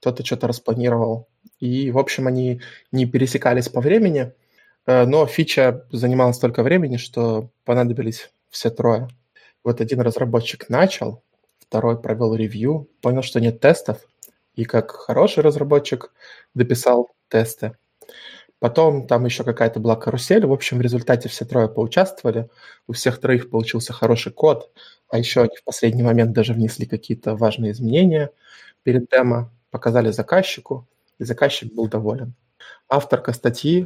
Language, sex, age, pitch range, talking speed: Russian, male, 20-39, 115-130 Hz, 135 wpm